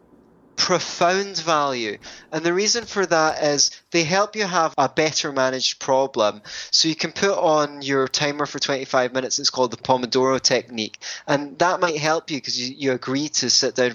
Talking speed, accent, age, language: 185 wpm, British, 20-39, English